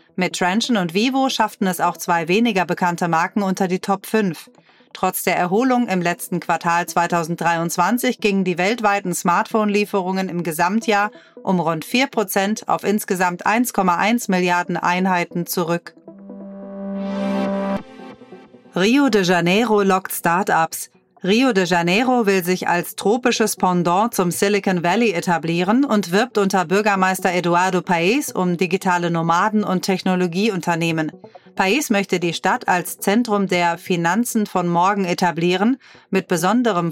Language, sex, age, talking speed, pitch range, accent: German, female, 40-59, 125 wpm, 175-210 Hz, German